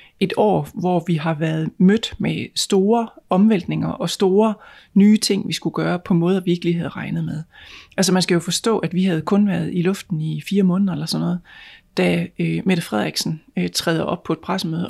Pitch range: 170-200 Hz